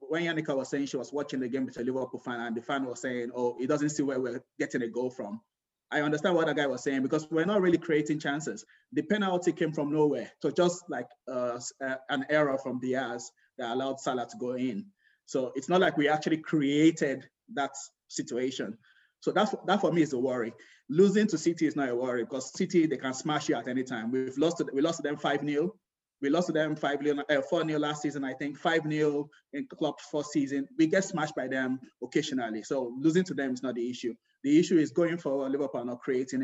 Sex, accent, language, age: male, Nigerian, English, 20-39